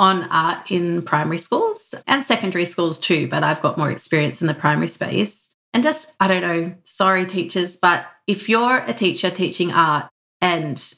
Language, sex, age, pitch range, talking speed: English, female, 30-49, 165-205 Hz, 180 wpm